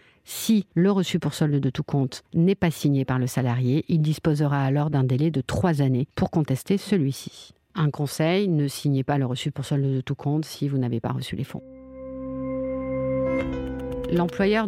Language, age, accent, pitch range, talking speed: French, 50-69, French, 135-165 Hz, 185 wpm